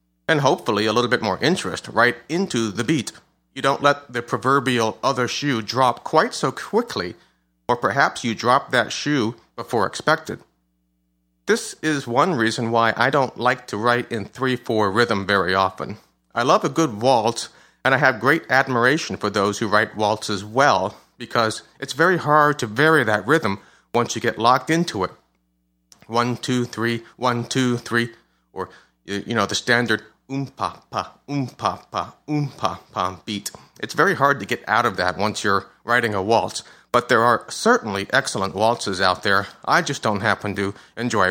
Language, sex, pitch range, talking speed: English, male, 100-135 Hz, 180 wpm